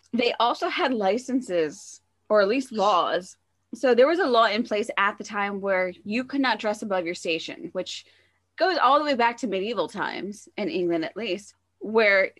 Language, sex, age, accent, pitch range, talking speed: English, female, 20-39, American, 185-235 Hz, 195 wpm